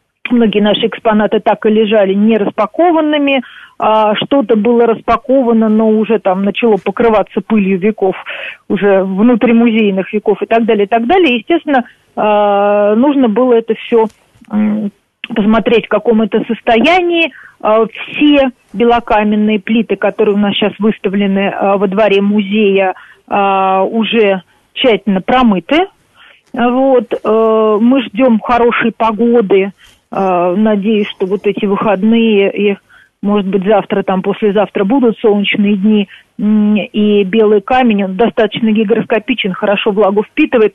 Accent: native